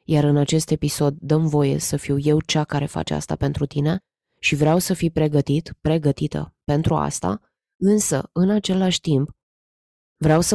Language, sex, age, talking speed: Romanian, female, 20-39, 165 wpm